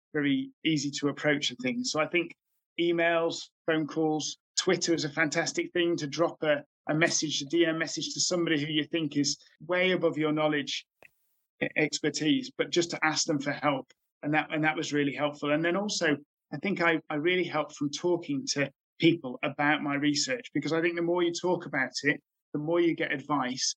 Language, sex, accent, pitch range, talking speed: English, male, British, 145-165 Hz, 200 wpm